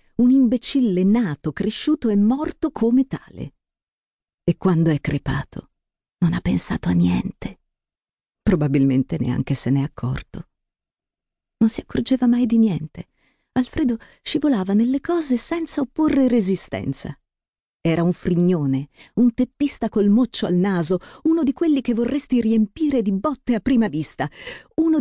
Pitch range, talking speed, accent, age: 145-245 Hz, 135 wpm, native, 40-59